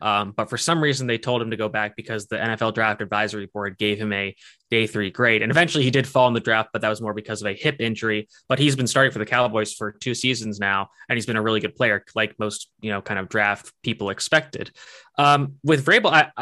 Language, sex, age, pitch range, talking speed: English, male, 20-39, 110-135 Hz, 255 wpm